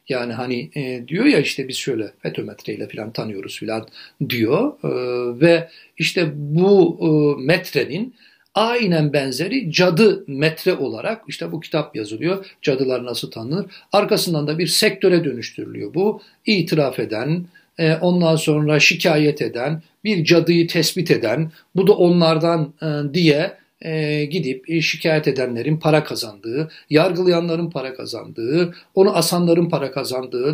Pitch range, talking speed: 135-170 Hz, 120 wpm